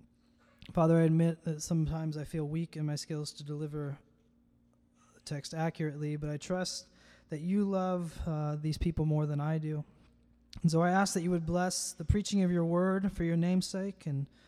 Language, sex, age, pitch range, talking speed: English, male, 20-39, 145-185 Hz, 190 wpm